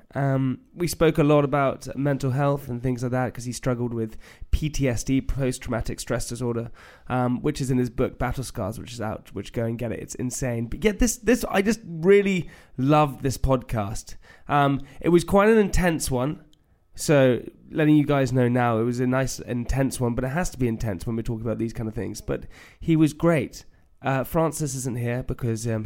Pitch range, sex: 115-140 Hz, male